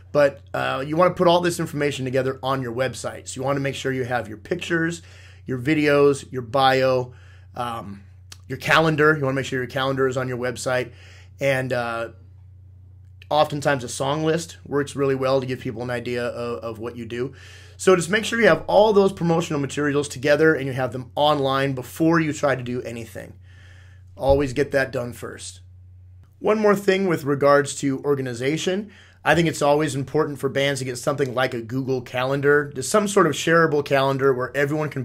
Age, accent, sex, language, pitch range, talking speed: 30-49, American, male, English, 120-145 Hz, 200 wpm